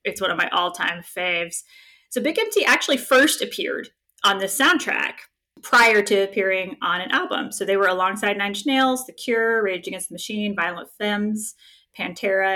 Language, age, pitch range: English, 20-39, 185-245 Hz